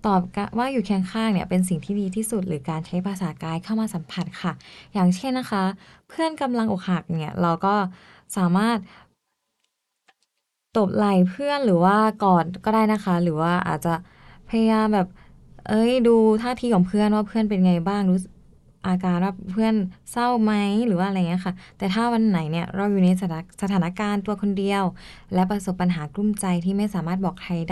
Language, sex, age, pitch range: English, female, 20-39, 180-210 Hz